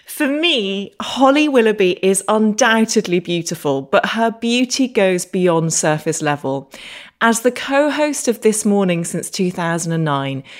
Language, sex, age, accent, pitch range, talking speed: English, female, 30-49, British, 155-225 Hz, 130 wpm